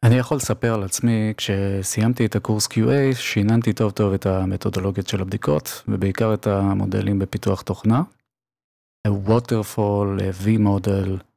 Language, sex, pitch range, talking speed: Hebrew, male, 100-115 Hz, 120 wpm